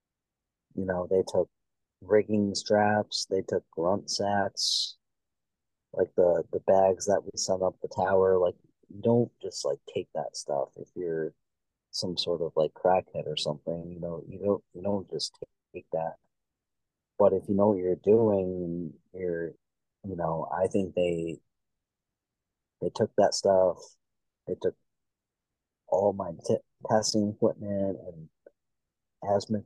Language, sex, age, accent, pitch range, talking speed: English, male, 30-49, American, 90-115 Hz, 140 wpm